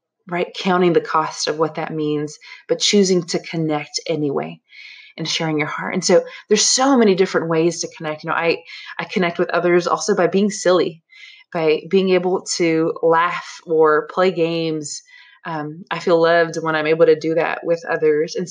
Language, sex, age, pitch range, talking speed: English, female, 20-39, 160-210 Hz, 190 wpm